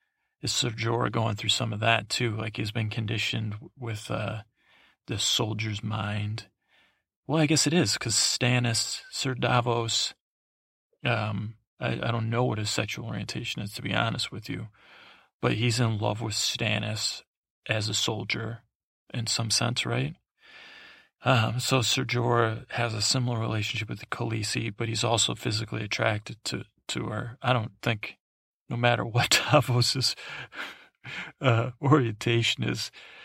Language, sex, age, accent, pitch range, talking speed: English, male, 40-59, American, 110-125 Hz, 150 wpm